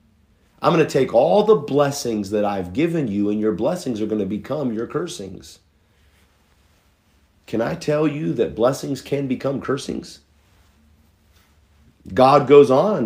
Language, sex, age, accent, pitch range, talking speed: English, male, 50-69, American, 95-145 Hz, 145 wpm